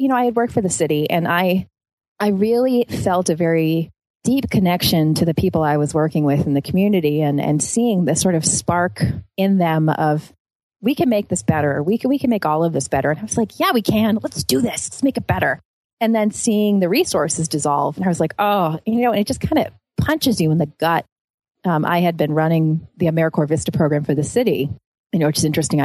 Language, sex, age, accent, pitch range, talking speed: English, female, 30-49, American, 150-205 Hz, 245 wpm